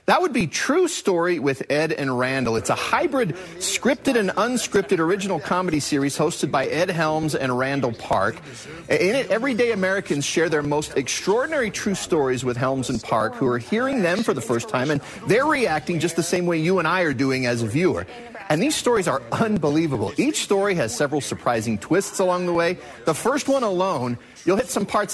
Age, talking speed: 40-59, 200 wpm